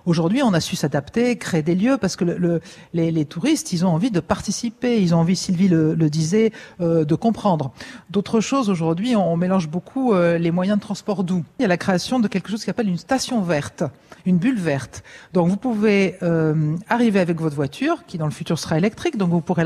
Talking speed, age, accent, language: 230 wpm, 50-69, French, French